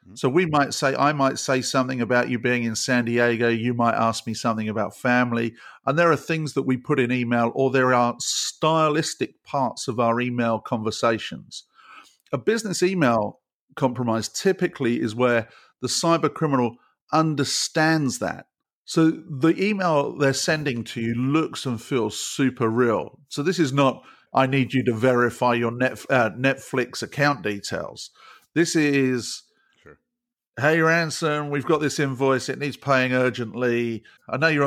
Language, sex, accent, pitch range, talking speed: English, male, British, 120-145 Hz, 160 wpm